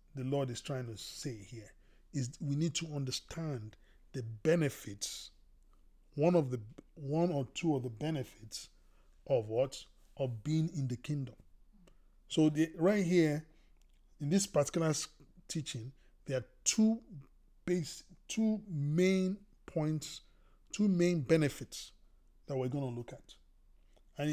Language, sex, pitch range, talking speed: English, male, 120-165 Hz, 135 wpm